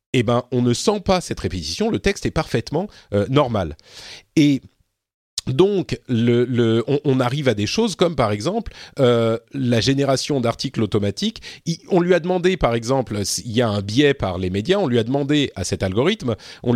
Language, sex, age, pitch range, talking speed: French, male, 40-59, 115-160 Hz, 195 wpm